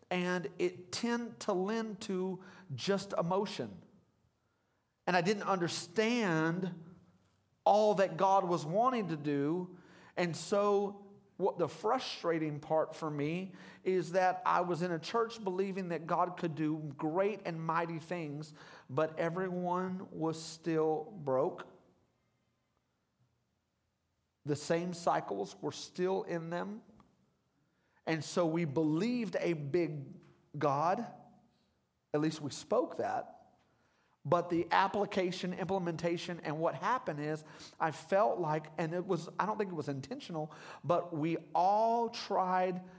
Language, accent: English, American